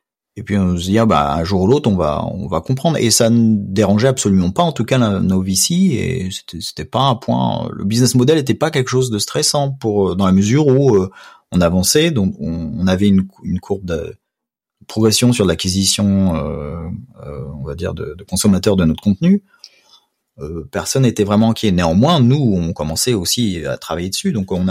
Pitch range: 95-120 Hz